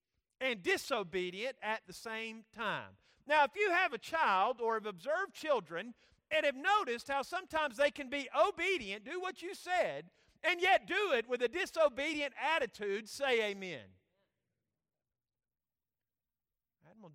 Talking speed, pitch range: 140 wpm, 200-295 Hz